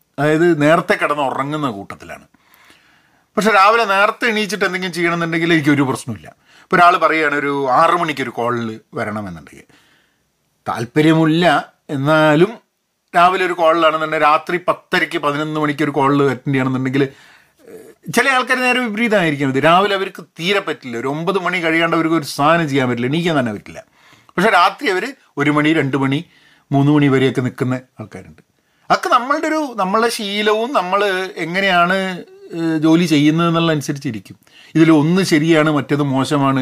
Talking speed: 125 wpm